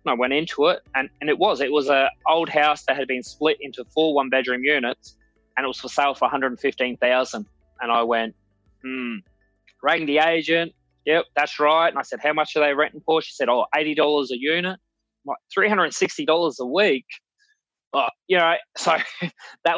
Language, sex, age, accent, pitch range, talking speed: English, male, 20-39, Australian, 125-150 Hz, 205 wpm